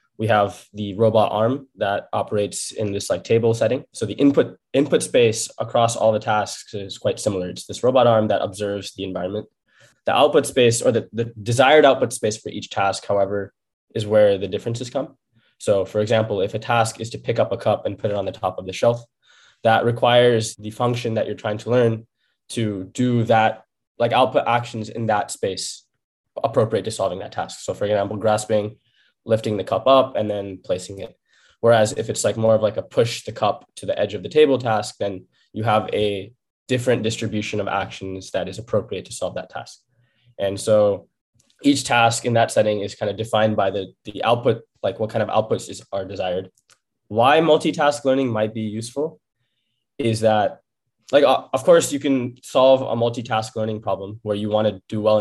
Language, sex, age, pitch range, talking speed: English, male, 20-39, 105-120 Hz, 200 wpm